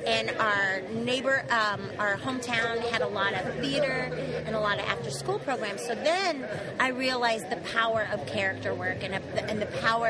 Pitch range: 230-285 Hz